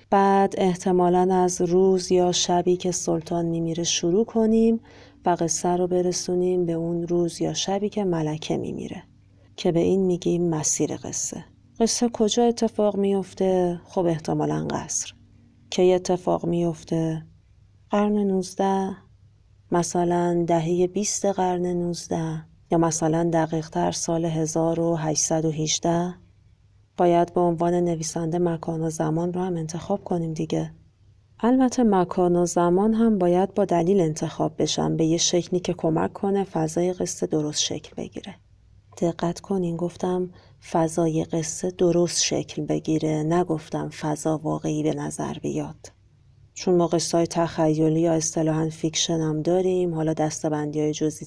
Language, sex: Persian, female